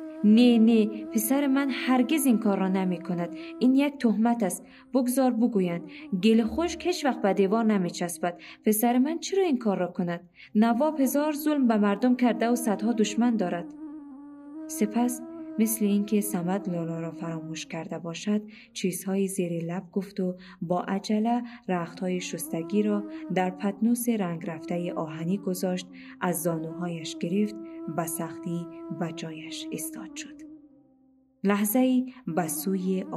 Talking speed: 145 wpm